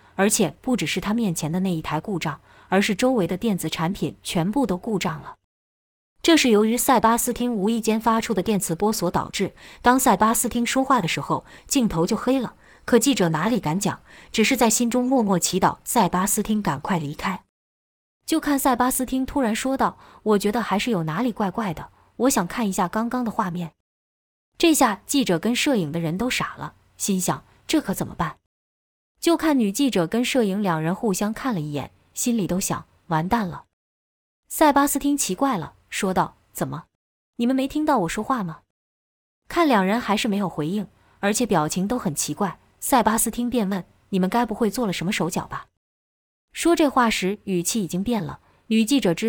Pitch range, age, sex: 175-240 Hz, 20-39, female